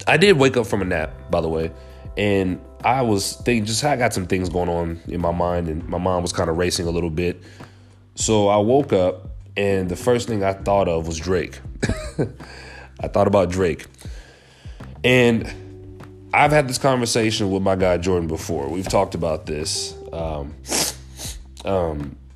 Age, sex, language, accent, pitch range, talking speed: 30-49, male, English, American, 85-105 Hz, 175 wpm